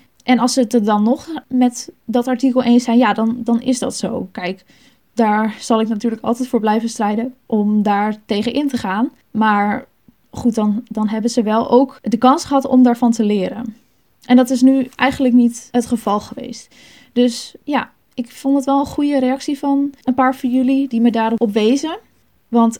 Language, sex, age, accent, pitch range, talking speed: Dutch, female, 10-29, Dutch, 230-260 Hz, 200 wpm